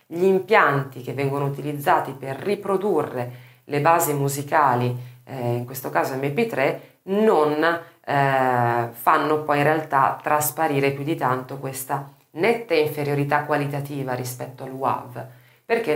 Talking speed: 125 wpm